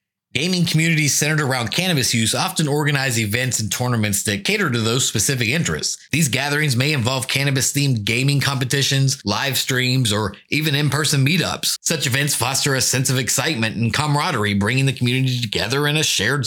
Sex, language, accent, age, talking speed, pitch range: male, English, American, 30-49, 170 wpm, 120-155 Hz